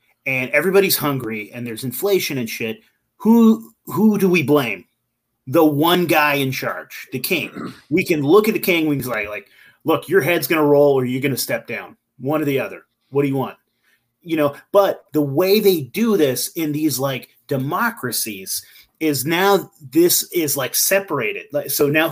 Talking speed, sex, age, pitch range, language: 185 wpm, male, 30-49, 140-185 Hz, English